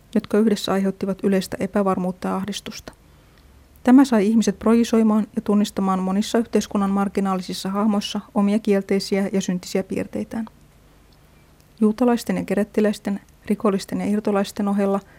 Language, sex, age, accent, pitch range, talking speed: Finnish, female, 30-49, native, 195-220 Hz, 115 wpm